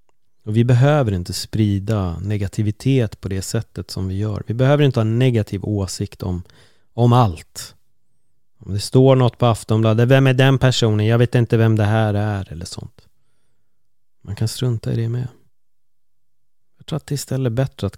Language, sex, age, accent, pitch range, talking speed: Swedish, male, 30-49, native, 95-120 Hz, 185 wpm